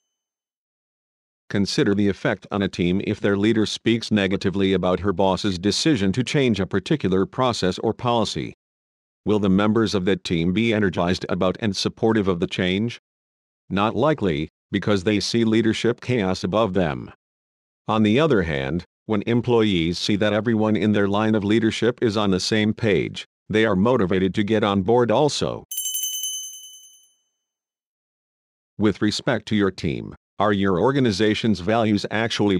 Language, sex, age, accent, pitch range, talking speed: English, male, 50-69, American, 95-115 Hz, 150 wpm